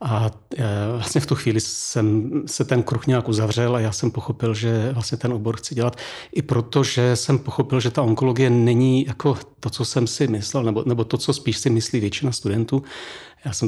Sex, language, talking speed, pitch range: male, Czech, 200 wpm, 110-125 Hz